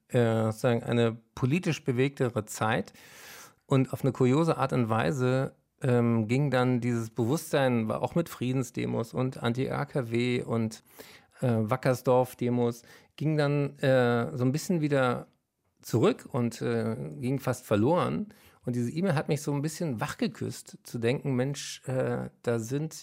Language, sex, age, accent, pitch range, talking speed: German, male, 50-69, German, 115-140 Hz, 140 wpm